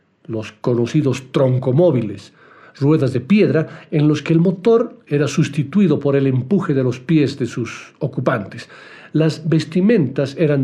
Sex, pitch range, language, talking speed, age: male, 130-170 Hz, Spanish, 140 wpm, 60-79